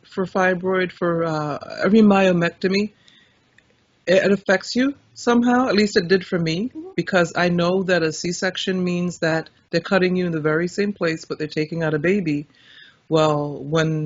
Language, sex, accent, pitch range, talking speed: English, female, American, 155-195 Hz, 170 wpm